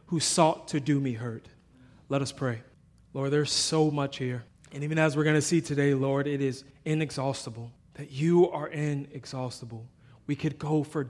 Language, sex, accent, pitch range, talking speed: English, male, American, 140-165 Hz, 180 wpm